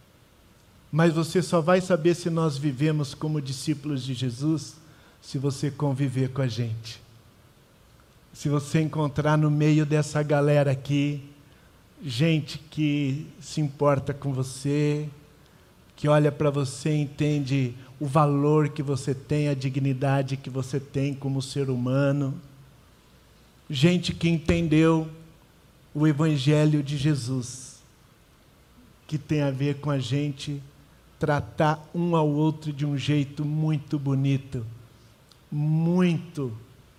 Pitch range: 135-160 Hz